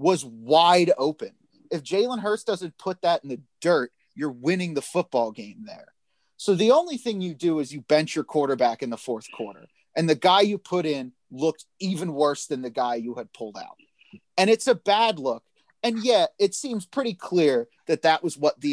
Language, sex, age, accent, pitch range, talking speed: English, male, 30-49, American, 145-200 Hz, 210 wpm